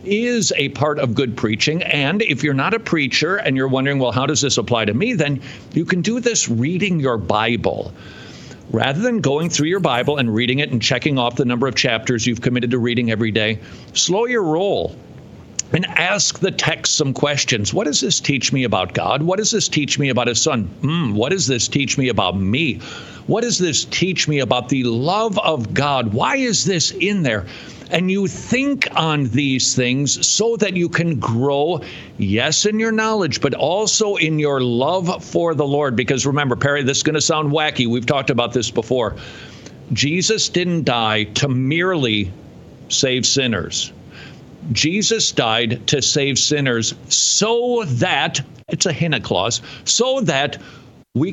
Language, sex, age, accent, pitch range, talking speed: English, male, 50-69, American, 120-165 Hz, 185 wpm